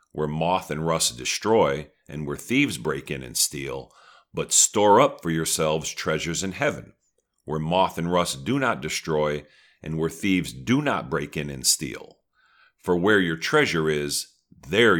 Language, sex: English, male